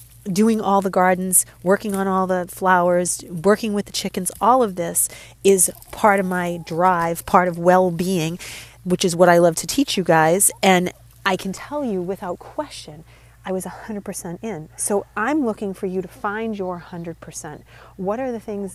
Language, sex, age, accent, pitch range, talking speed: English, female, 30-49, American, 165-195 Hz, 180 wpm